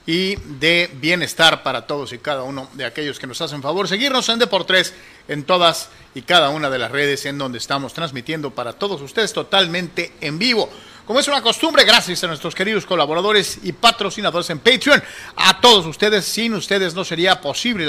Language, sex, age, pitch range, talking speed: Spanish, male, 50-69, 145-195 Hz, 190 wpm